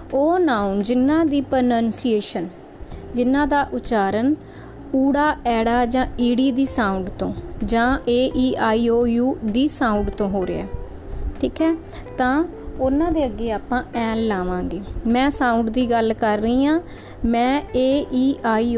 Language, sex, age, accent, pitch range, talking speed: English, female, 20-39, Indian, 220-265 Hz, 145 wpm